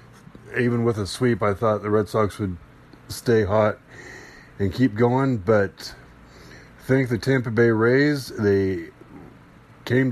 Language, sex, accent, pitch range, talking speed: English, male, American, 105-125 Hz, 135 wpm